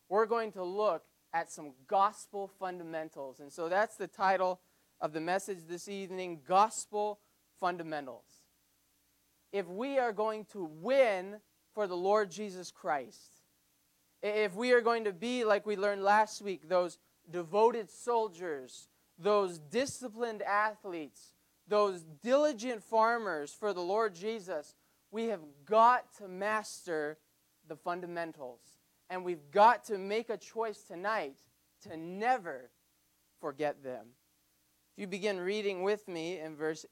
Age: 30-49